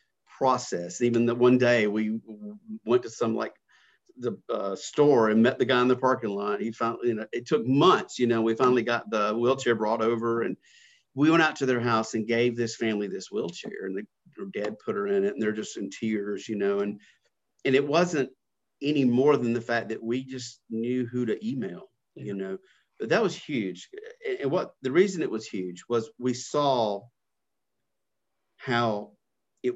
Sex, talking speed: male, 200 wpm